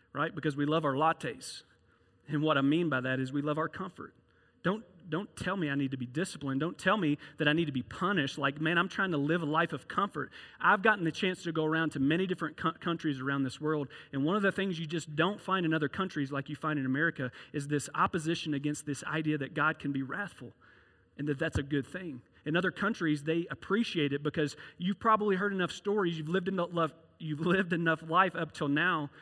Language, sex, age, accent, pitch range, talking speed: English, male, 40-59, American, 140-170 Hz, 240 wpm